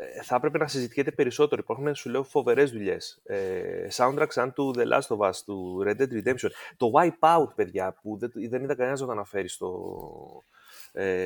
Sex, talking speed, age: male, 165 wpm, 30-49